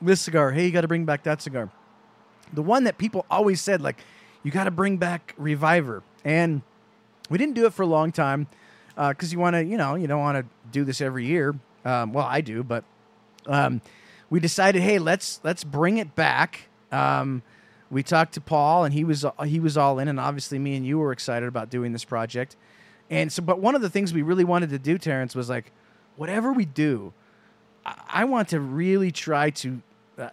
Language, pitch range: English, 140-180 Hz